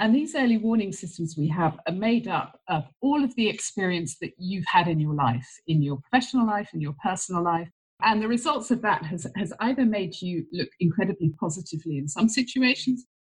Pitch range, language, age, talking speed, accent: 160-225 Hz, English, 50-69, 205 wpm, British